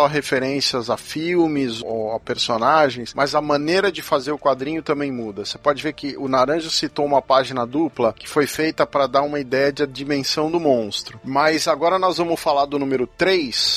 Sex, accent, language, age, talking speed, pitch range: male, Brazilian, Portuguese, 40-59, 190 wpm, 140-175 Hz